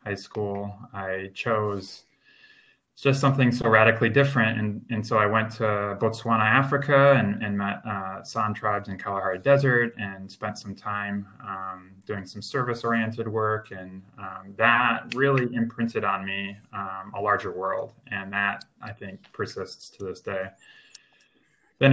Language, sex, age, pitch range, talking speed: English, male, 20-39, 100-115 Hz, 150 wpm